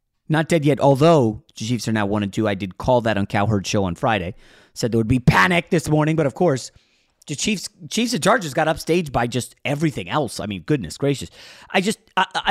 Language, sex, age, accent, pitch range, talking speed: English, male, 30-49, American, 120-175 Hz, 230 wpm